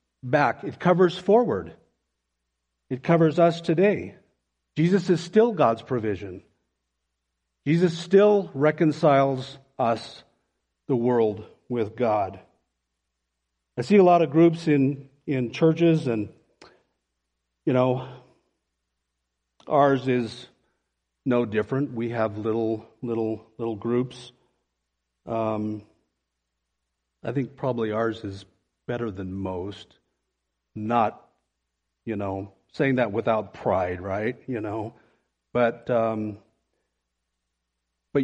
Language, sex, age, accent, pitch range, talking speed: English, male, 50-69, American, 90-140 Hz, 105 wpm